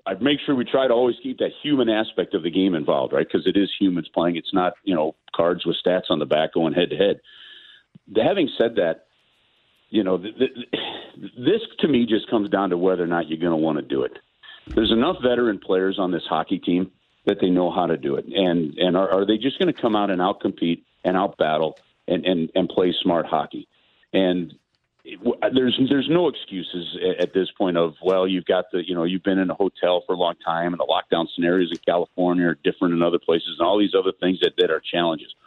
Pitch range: 90-115 Hz